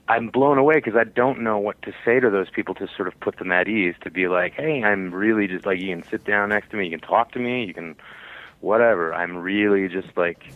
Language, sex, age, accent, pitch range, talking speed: English, male, 30-49, American, 90-110 Hz, 265 wpm